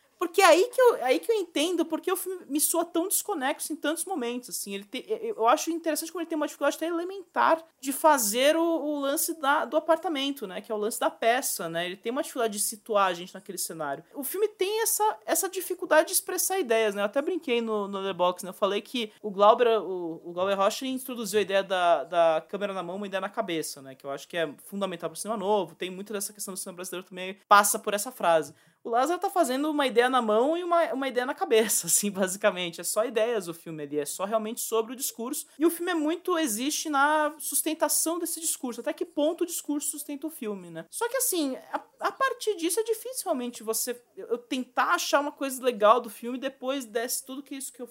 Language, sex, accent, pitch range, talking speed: English, male, Brazilian, 200-325 Hz, 245 wpm